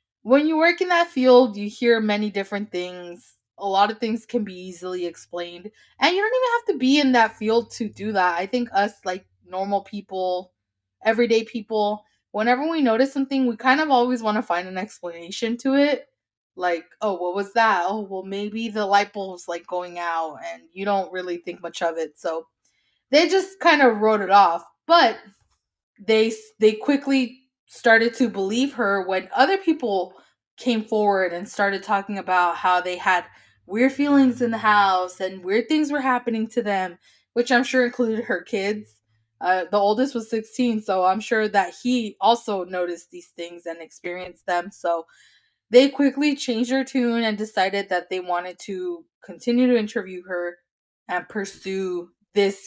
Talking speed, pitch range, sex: 180 wpm, 180-240 Hz, female